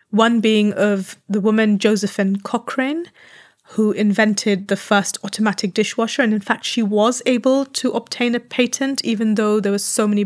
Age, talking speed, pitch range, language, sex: 30-49, 170 wpm, 205-235 Hz, English, female